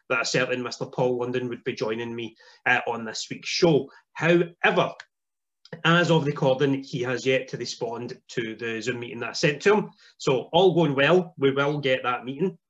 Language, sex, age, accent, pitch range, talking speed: English, male, 30-49, British, 125-170 Hz, 200 wpm